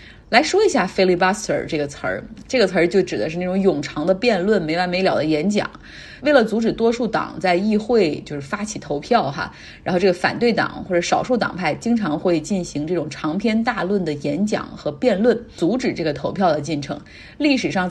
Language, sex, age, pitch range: Chinese, female, 20-39, 165-220 Hz